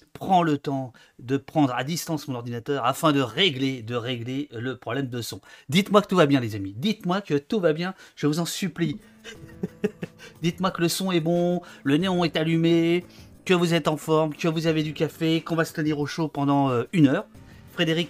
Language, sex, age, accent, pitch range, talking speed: French, male, 30-49, French, 125-170 Hz, 215 wpm